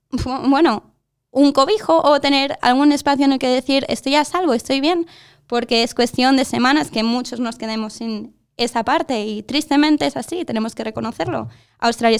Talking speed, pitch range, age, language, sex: 175 wpm, 225-270 Hz, 20-39, English, female